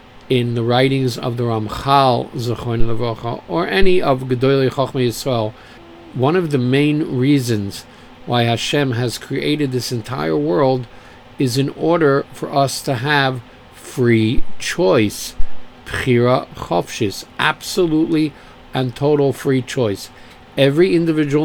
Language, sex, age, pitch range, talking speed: English, male, 50-69, 120-145 Hz, 120 wpm